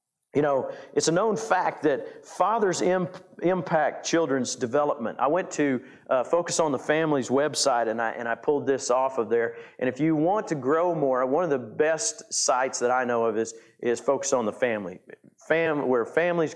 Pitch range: 120-150 Hz